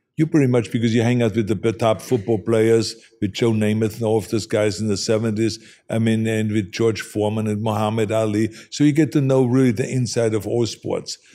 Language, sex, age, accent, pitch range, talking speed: English, male, 50-69, German, 110-125 Hz, 225 wpm